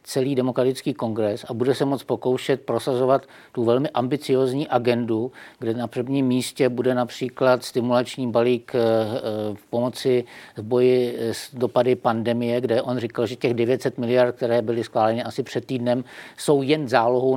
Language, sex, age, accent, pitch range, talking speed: Czech, male, 50-69, native, 115-130 Hz, 150 wpm